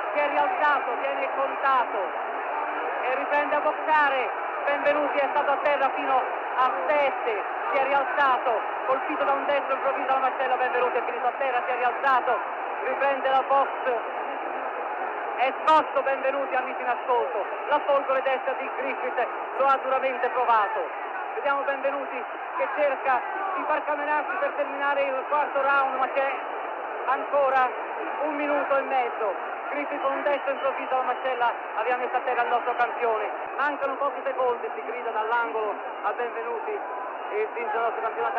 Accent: native